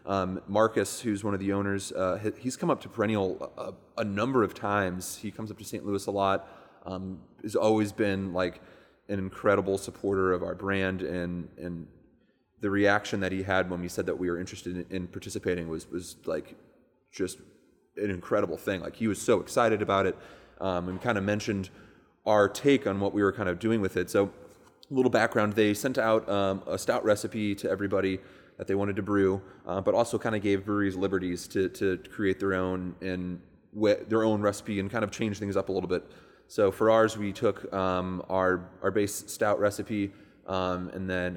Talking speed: 205 wpm